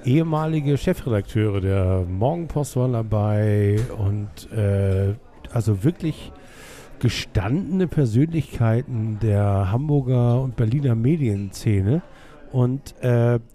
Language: German